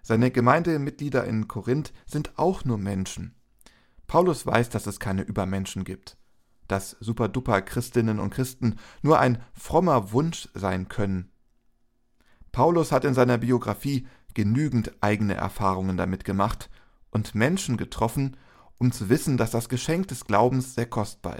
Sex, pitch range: male, 105-135 Hz